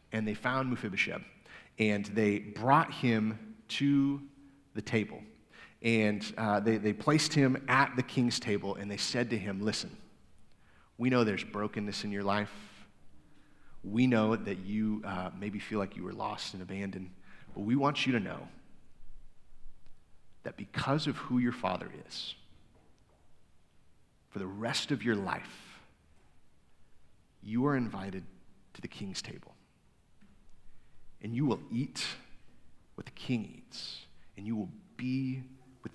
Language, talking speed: English, 145 wpm